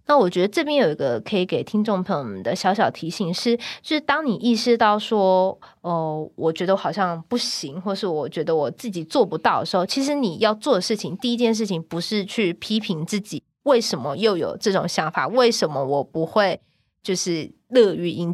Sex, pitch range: female, 175-225 Hz